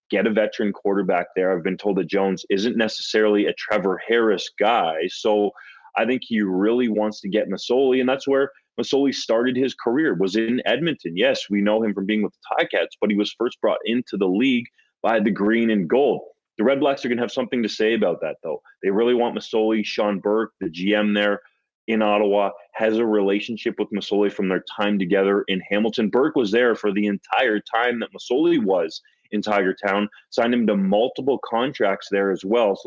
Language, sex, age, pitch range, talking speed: English, male, 30-49, 100-120 Hz, 210 wpm